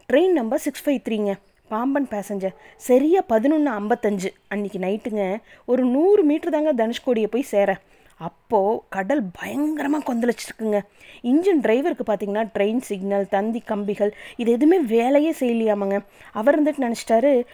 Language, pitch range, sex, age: Tamil, 210-290 Hz, female, 20-39